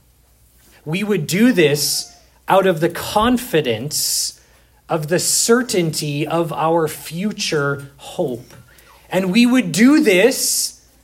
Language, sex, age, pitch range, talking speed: English, male, 30-49, 150-220 Hz, 110 wpm